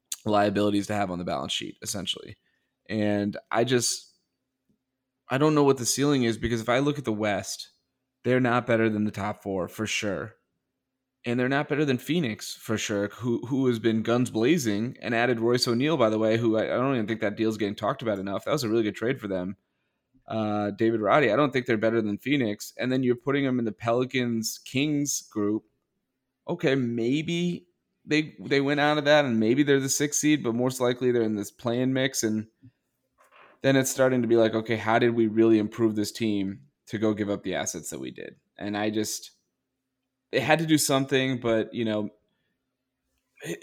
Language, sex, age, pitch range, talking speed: English, male, 30-49, 110-130 Hz, 210 wpm